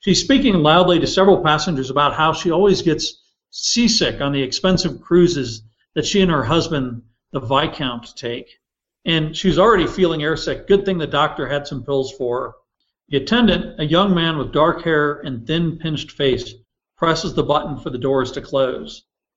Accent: American